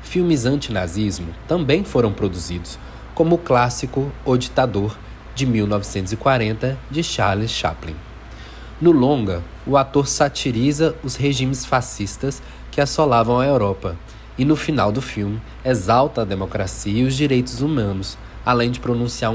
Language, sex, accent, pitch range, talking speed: Portuguese, male, Brazilian, 100-130 Hz, 130 wpm